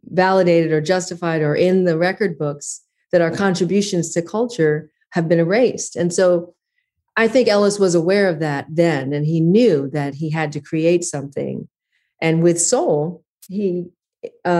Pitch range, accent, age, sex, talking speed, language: 155-190 Hz, American, 40-59, female, 160 wpm, English